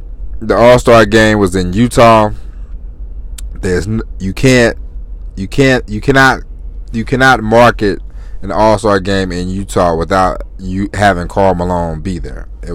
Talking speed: 150 wpm